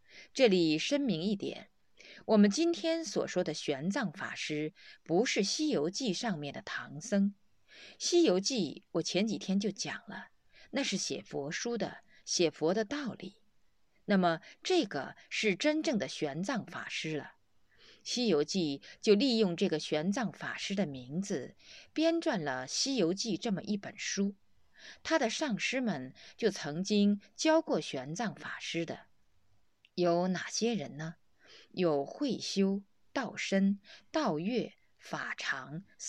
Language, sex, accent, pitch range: Chinese, female, native, 165-240 Hz